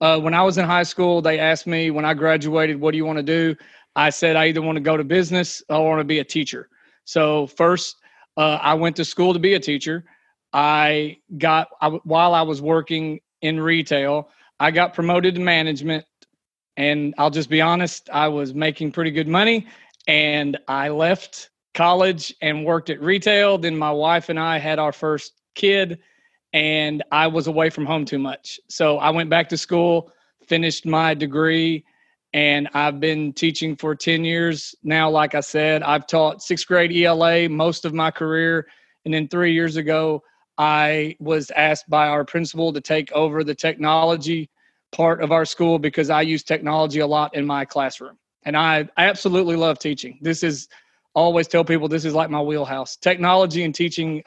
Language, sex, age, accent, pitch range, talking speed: English, male, 40-59, American, 150-165 Hz, 190 wpm